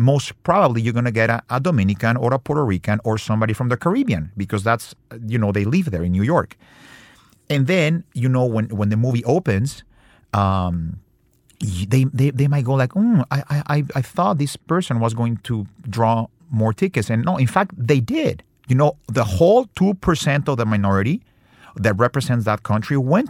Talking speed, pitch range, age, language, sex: 195 wpm, 105-140 Hz, 50-69, English, male